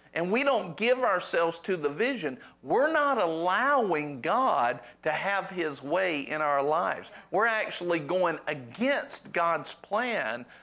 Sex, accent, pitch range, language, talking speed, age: male, American, 150-210 Hz, English, 140 wpm, 50-69